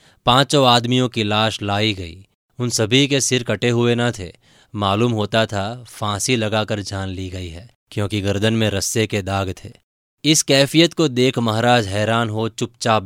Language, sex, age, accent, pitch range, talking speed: Hindi, male, 20-39, native, 105-120 Hz, 85 wpm